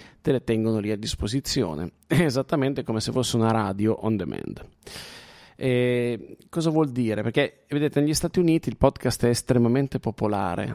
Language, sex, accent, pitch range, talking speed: Italian, male, native, 110-135 Hz, 150 wpm